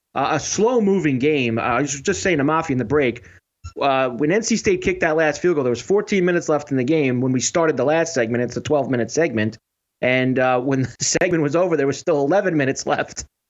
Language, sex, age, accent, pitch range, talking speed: English, male, 30-49, American, 130-180 Hz, 240 wpm